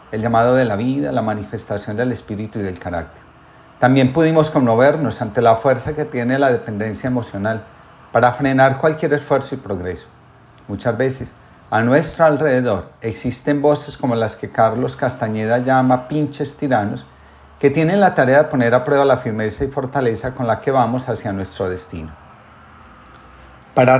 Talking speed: 160 wpm